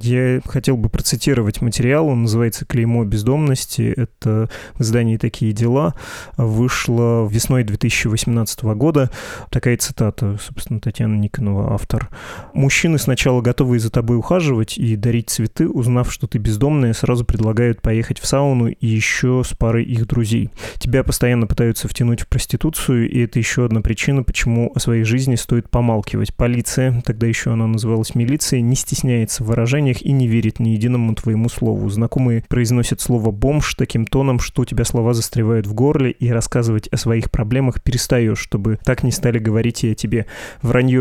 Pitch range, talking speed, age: 115-130 Hz, 160 wpm, 20-39